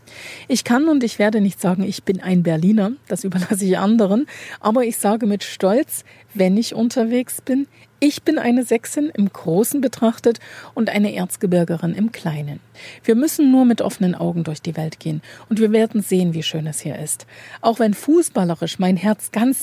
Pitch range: 180-225 Hz